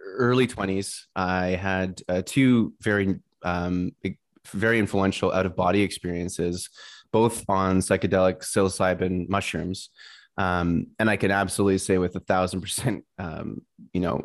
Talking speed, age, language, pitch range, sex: 130 wpm, 20-39, English, 90-100 Hz, male